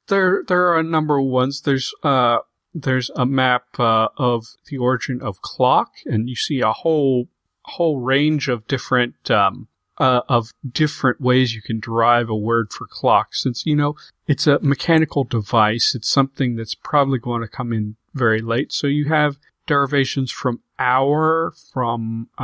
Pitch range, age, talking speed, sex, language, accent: 120-145 Hz, 40-59, 165 wpm, male, English, American